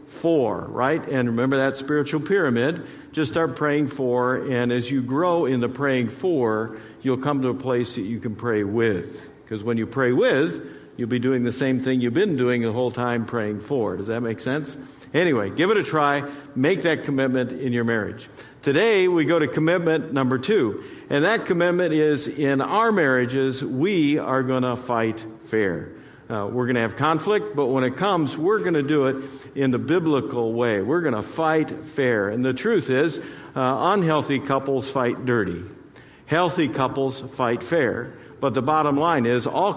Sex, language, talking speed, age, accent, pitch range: male, English, 190 wpm, 50-69, American, 125-155 Hz